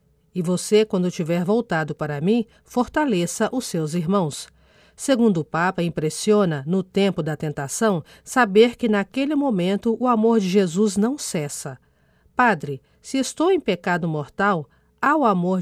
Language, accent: Portuguese, Brazilian